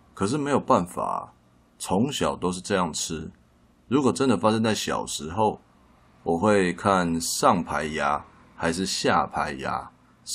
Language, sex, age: Chinese, male, 20-39